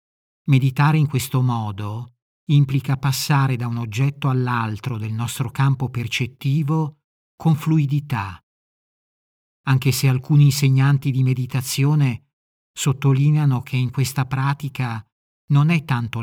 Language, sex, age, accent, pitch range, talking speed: Italian, male, 50-69, native, 120-145 Hz, 110 wpm